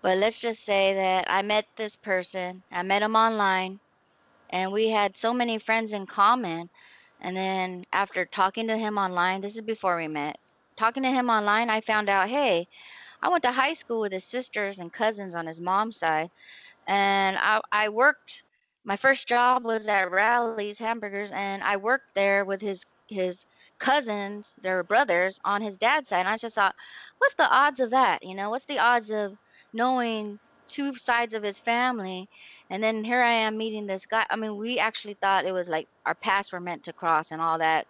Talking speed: 200 wpm